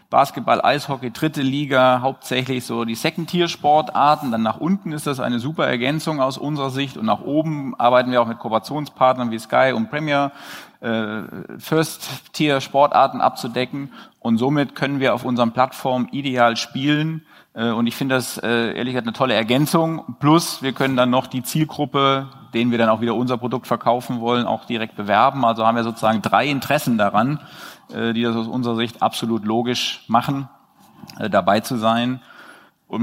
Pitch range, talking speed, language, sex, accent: 120-145 Hz, 160 wpm, German, male, German